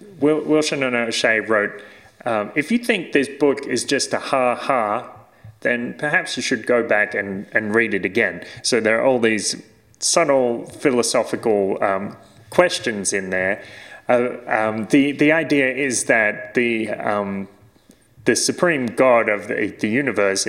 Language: English